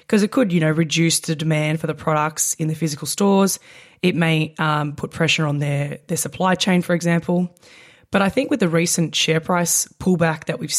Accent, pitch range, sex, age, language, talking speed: Australian, 155-180 Hz, female, 20-39, English, 210 wpm